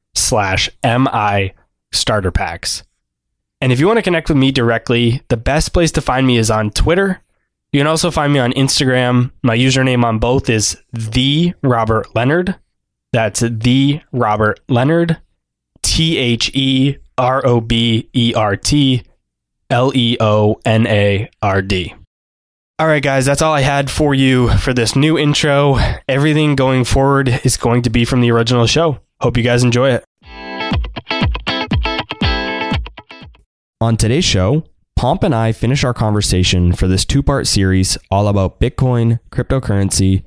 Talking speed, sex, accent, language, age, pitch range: 155 wpm, male, American, English, 20-39, 100-135 Hz